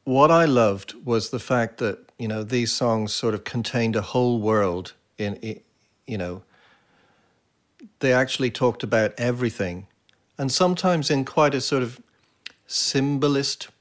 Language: English